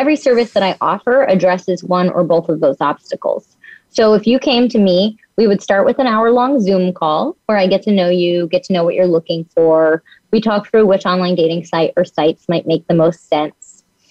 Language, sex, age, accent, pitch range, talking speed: English, female, 20-39, American, 180-240 Hz, 225 wpm